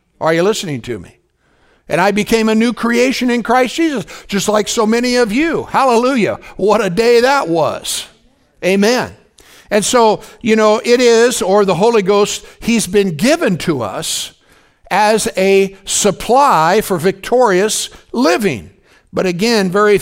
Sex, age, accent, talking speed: male, 60-79, American, 155 wpm